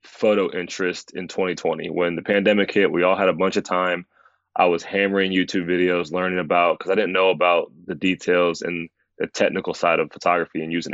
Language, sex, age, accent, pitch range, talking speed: English, male, 20-39, American, 90-100 Hz, 205 wpm